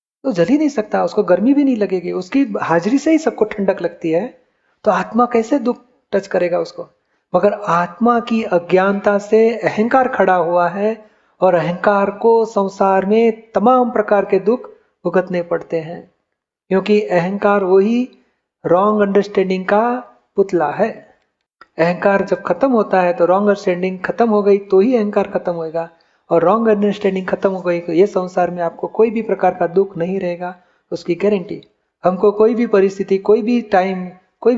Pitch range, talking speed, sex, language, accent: 175-210 Hz, 170 wpm, male, Hindi, native